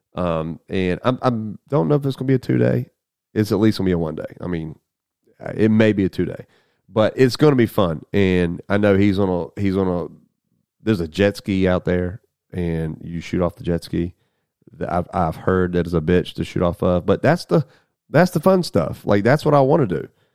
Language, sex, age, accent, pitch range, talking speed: English, male, 30-49, American, 90-115 Hz, 245 wpm